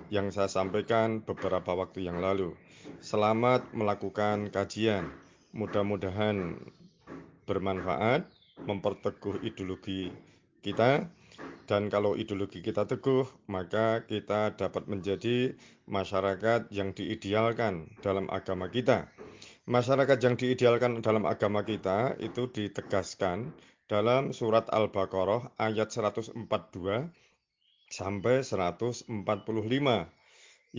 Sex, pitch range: male, 100-125 Hz